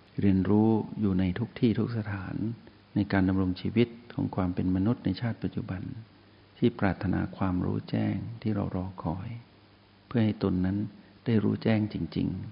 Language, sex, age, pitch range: Thai, male, 60-79, 95-110 Hz